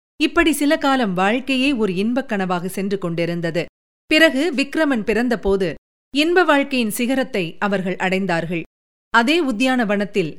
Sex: female